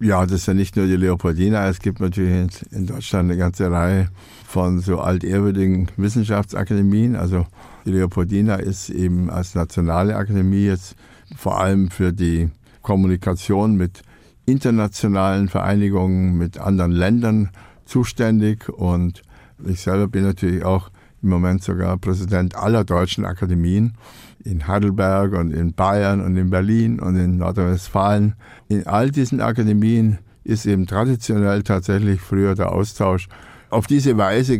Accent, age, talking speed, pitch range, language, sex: German, 60-79, 135 wpm, 95-105 Hz, German, male